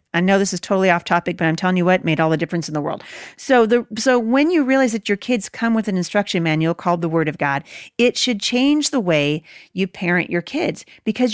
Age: 40-59